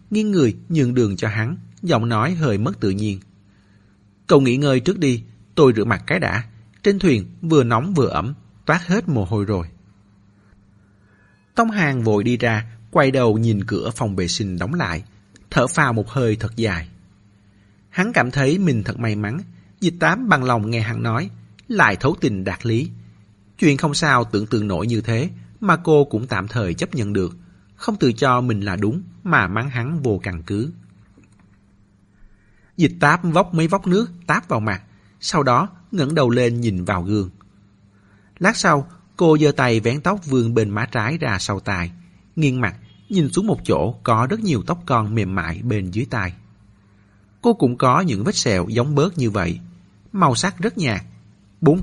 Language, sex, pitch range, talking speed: Vietnamese, male, 100-145 Hz, 190 wpm